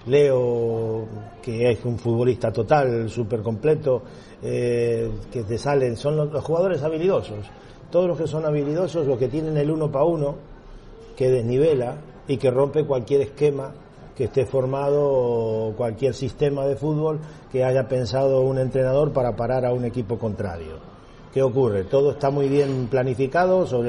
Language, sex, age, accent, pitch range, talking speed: Spanish, male, 40-59, Argentinian, 115-135 Hz, 155 wpm